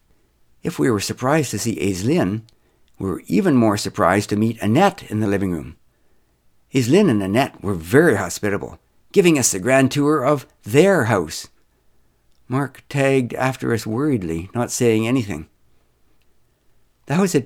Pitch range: 90-140 Hz